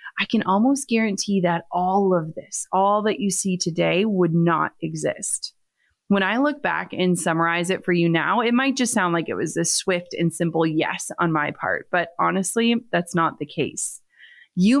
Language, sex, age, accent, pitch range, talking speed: English, female, 30-49, American, 180-230 Hz, 195 wpm